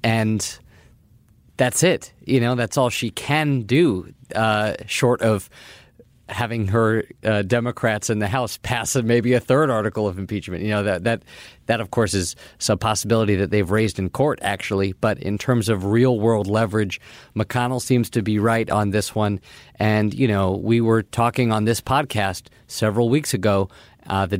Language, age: English, 40-59